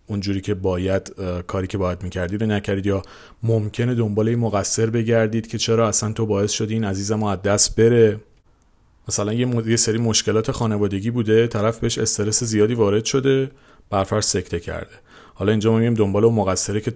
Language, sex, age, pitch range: Persian, male, 40-59, 95-120 Hz